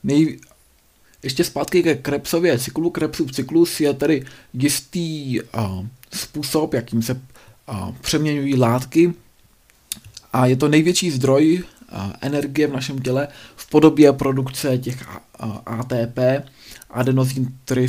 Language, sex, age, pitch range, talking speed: Czech, male, 20-39, 120-150 Hz, 130 wpm